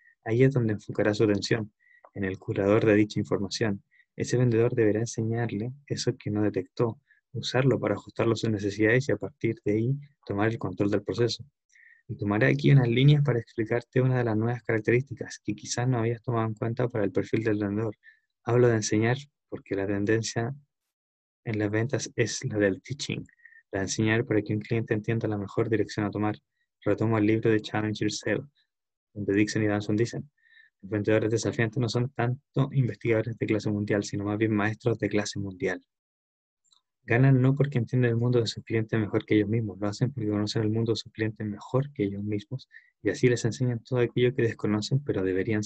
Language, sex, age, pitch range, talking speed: Spanish, male, 20-39, 105-125 Hz, 195 wpm